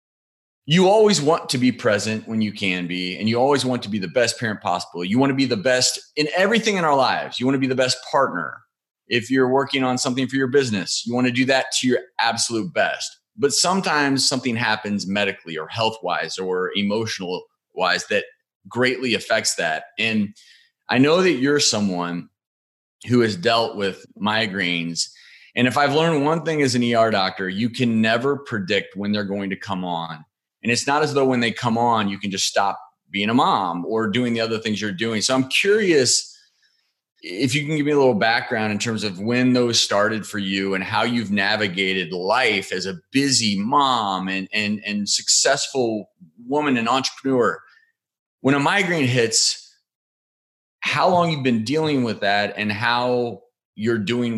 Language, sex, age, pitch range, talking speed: English, male, 30-49, 100-135 Hz, 190 wpm